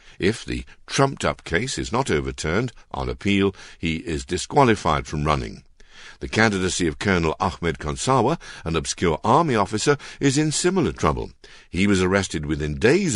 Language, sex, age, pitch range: Chinese, male, 60-79, 75-110 Hz